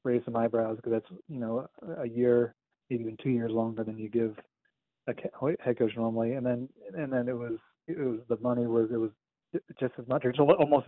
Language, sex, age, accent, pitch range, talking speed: English, male, 40-59, American, 115-130 Hz, 205 wpm